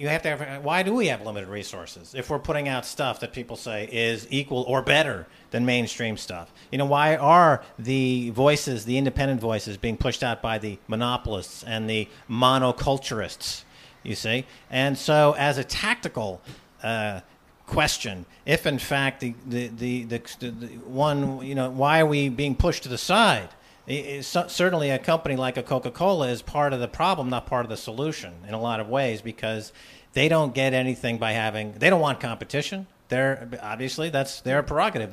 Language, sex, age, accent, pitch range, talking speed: English, male, 50-69, American, 115-145 Hz, 185 wpm